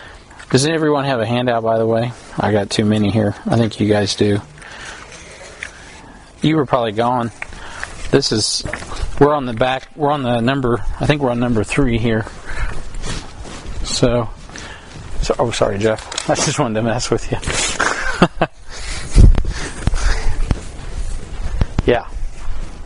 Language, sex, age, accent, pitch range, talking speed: English, male, 40-59, American, 110-130 Hz, 135 wpm